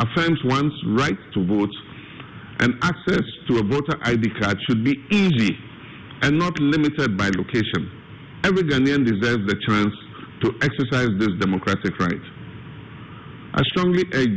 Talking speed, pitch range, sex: 140 wpm, 105-135 Hz, male